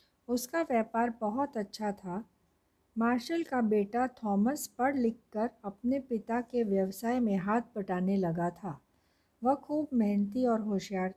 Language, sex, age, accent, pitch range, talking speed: Hindi, female, 50-69, native, 200-250 Hz, 135 wpm